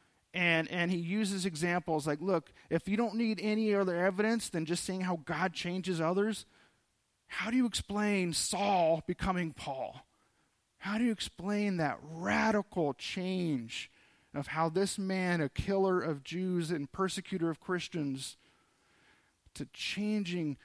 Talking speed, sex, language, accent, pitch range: 140 wpm, male, English, American, 155-195 Hz